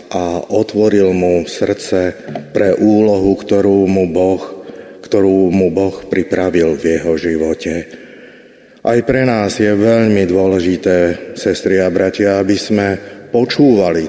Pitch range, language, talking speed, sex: 95-115 Hz, Slovak, 120 wpm, male